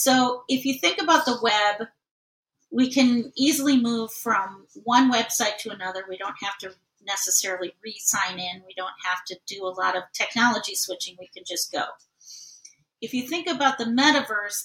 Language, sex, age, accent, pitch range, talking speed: English, female, 40-59, American, 200-255 Hz, 175 wpm